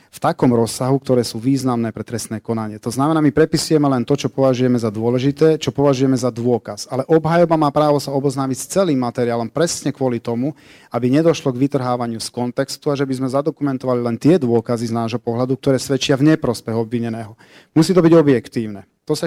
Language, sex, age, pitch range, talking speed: Slovak, male, 40-59, 115-145 Hz, 195 wpm